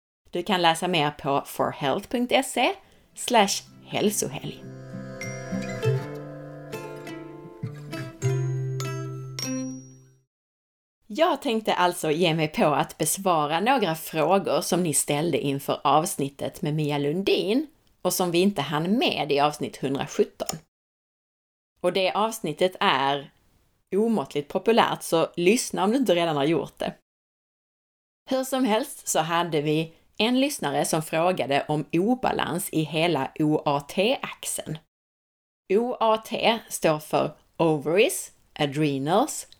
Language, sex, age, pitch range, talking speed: Swedish, female, 30-49, 140-195 Hz, 105 wpm